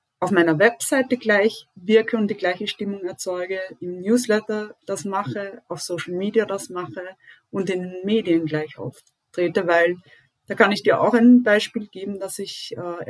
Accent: German